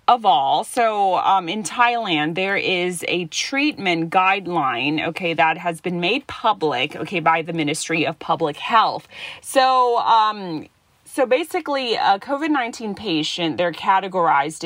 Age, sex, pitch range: 30-49, female, 170-220 Hz